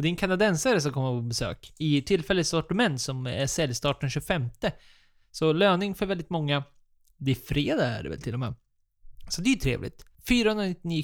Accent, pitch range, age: native, 135-175 Hz, 20-39